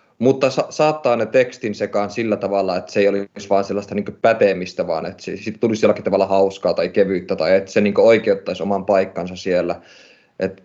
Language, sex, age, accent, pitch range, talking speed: Finnish, male, 20-39, native, 95-105 Hz, 185 wpm